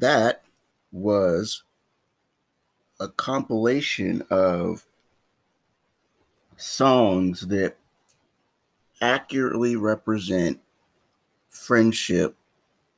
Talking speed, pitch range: 45 wpm, 95-115 Hz